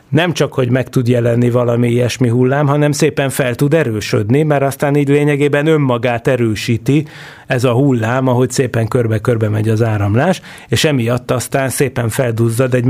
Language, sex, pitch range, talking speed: Hungarian, male, 125-145 Hz, 170 wpm